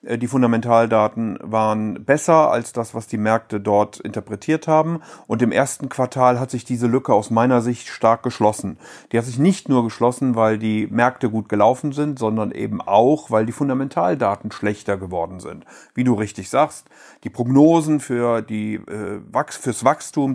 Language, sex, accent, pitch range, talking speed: German, male, German, 110-130 Hz, 160 wpm